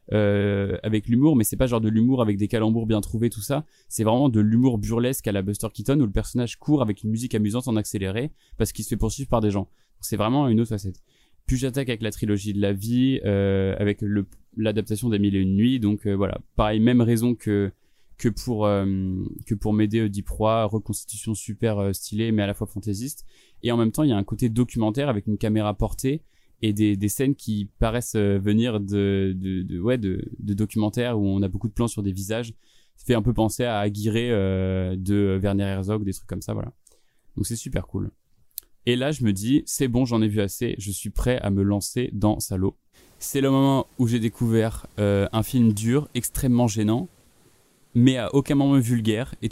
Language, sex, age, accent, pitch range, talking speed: French, male, 20-39, French, 100-120 Hz, 220 wpm